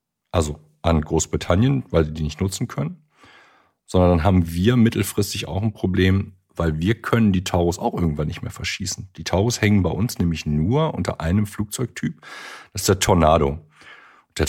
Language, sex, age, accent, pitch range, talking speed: German, male, 50-69, German, 85-105 Hz, 175 wpm